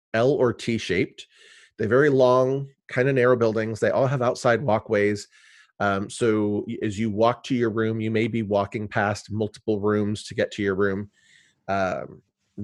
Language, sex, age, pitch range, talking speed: English, male, 30-49, 105-130 Hz, 170 wpm